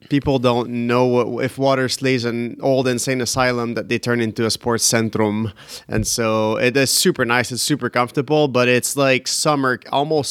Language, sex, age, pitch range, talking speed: English, male, 20-39, 115-140 Hz, 180 wpm